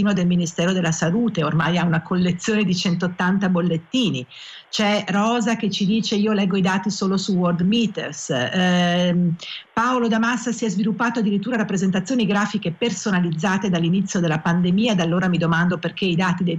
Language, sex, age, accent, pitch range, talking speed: Italian, female, 50-69, native, 175-205 Hz, 165 wpm